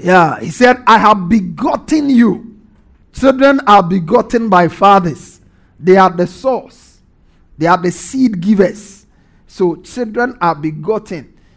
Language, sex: English, male